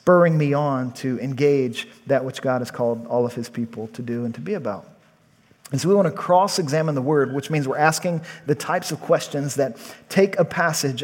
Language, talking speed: English, 215 wpm